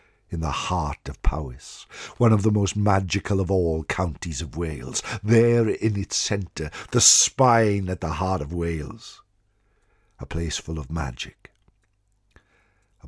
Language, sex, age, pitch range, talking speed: English, male, 60-79, 80-105 Hz, 145 wpm